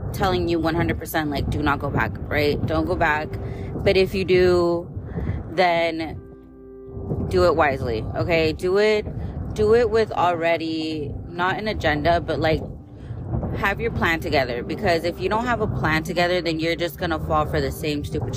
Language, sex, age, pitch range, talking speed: English, female, 20-39, 130-170 Hz, 175 wpm